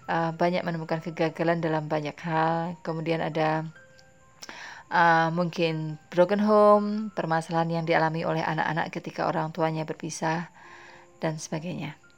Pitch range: 160-200 Hz